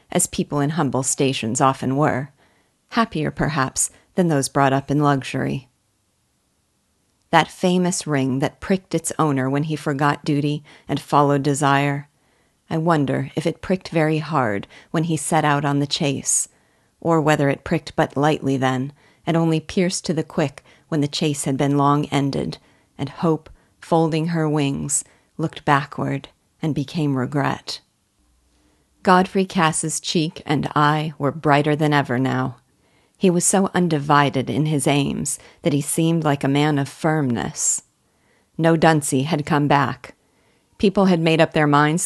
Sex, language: female, English